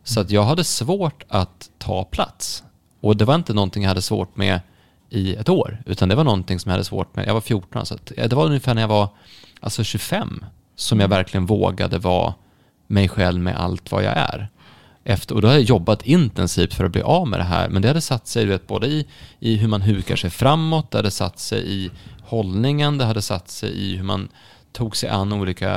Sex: male